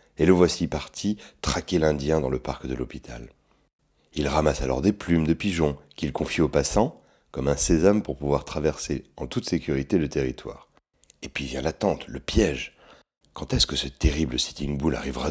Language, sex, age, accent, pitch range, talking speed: French, male, 30-49, French, 70-80 Hz, 185 wpm